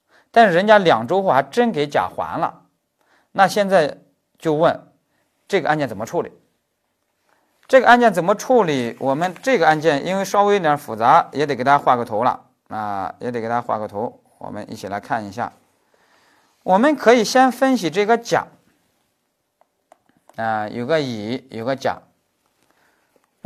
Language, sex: Chinese, male